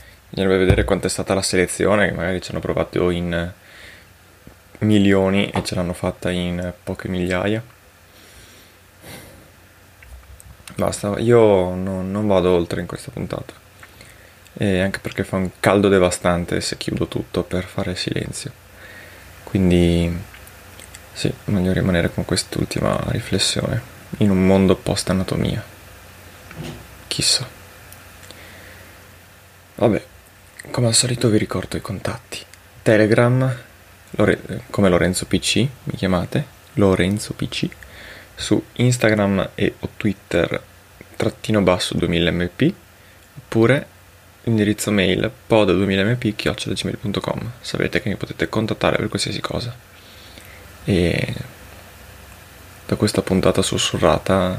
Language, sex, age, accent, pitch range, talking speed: Italian, male, 20-39, native, 90-105 Hz, 105 wpm